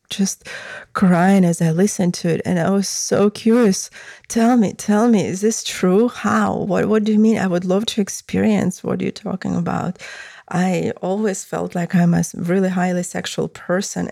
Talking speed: 185 wpm